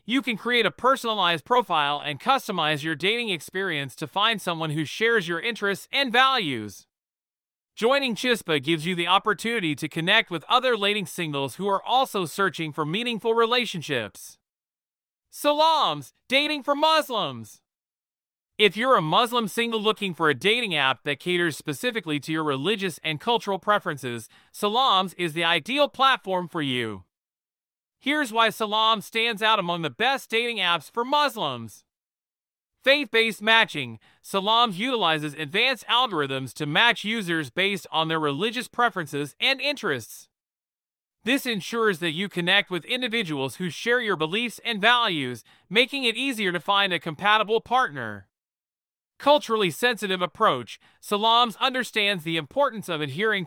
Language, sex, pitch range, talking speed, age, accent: English, male, 160-235 Hz, 145 wpm, 40-59, American